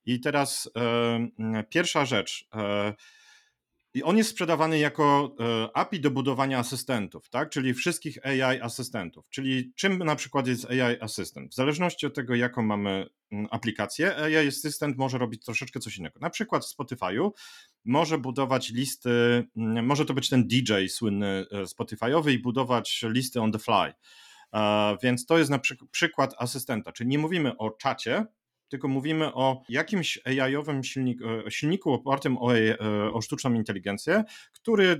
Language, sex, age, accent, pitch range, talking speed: Polish, male, 40-59, native, 115-140 Hz, 140 wpm